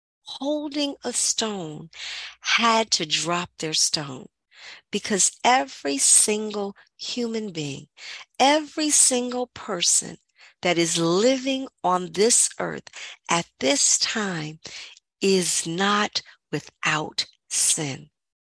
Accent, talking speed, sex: American, 95 wpm, female